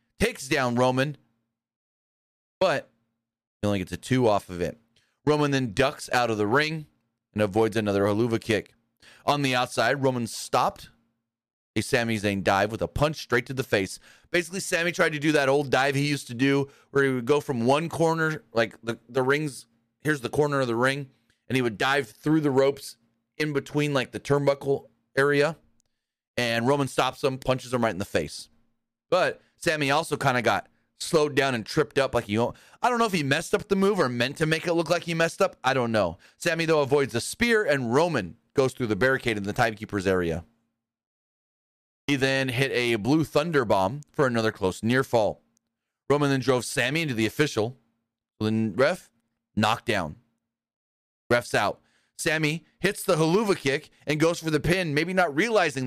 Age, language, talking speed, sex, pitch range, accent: 30-49, English, 195 wpm, male, 115-150 Hz, American